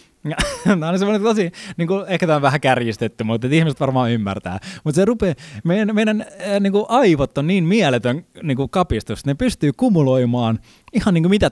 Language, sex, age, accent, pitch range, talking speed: Finnish, male, 20-39, native, 125-205 Hz, 165 wpm